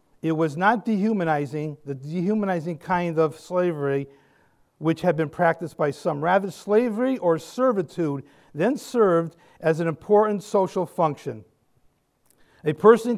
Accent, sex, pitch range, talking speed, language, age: American, male, 160-200 Hz, 125 wpm, English, 50-69